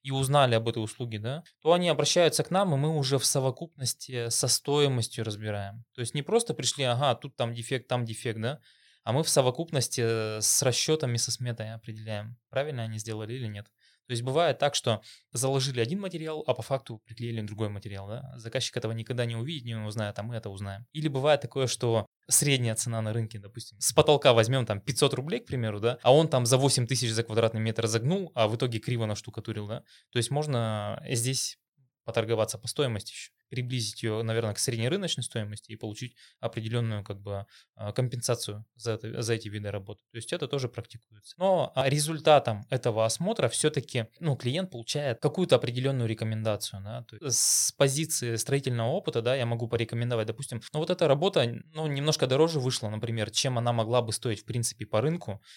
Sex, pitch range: male, 110-135 Hz